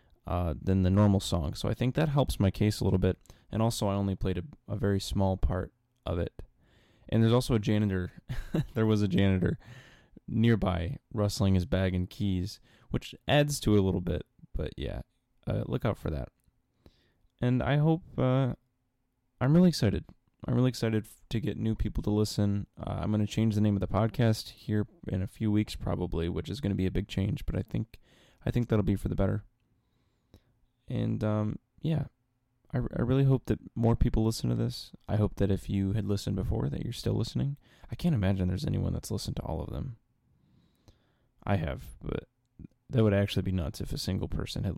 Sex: male